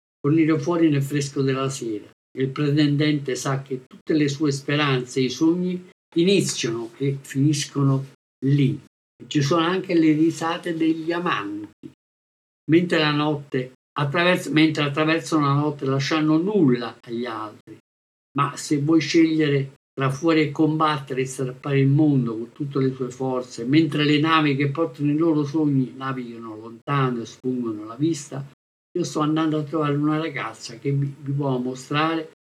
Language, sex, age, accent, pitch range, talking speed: Italian, male, 50-69, native, 130-160 Hz, 150 wpm